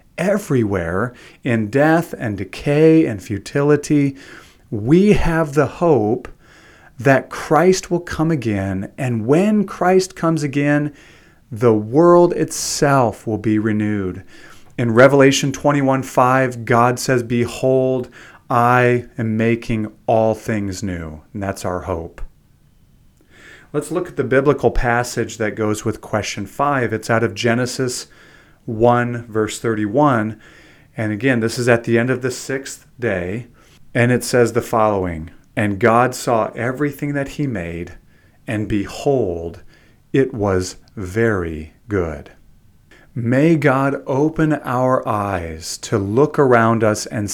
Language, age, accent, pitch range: English, 30-49, American, 110-140 Hz